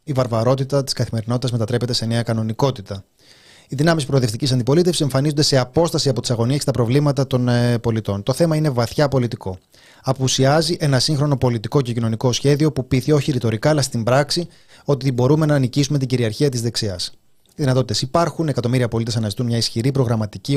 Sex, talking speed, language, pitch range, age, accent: male, 170 wpm, Greek, 125-155 Hz, 30-49, native